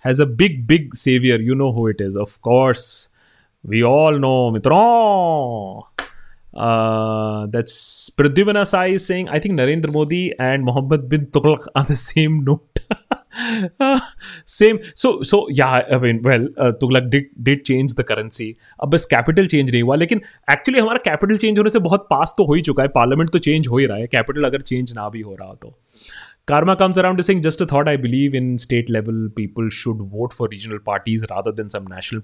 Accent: native